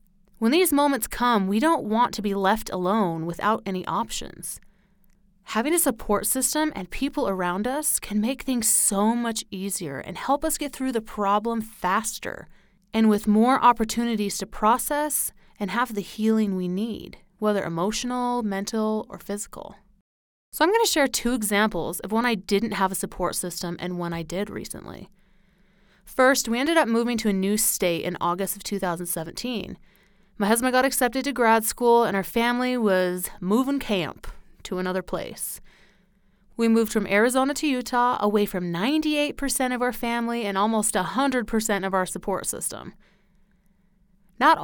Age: 30-49